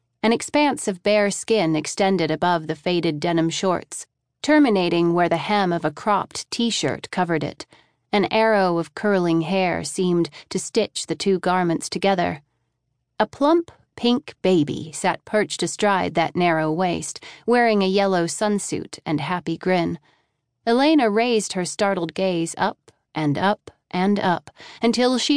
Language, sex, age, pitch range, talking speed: English, female, 30-49, 160-210 Hz, 145 wpm